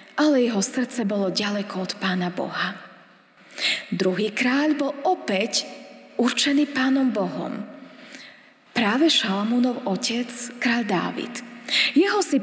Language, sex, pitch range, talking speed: Slovak, female, 210-280 Hz, 105 wpm